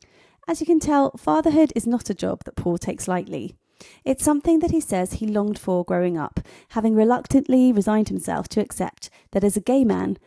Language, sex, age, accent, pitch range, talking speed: English, female, 30-49, British, 185-250 Hz, 200 wpm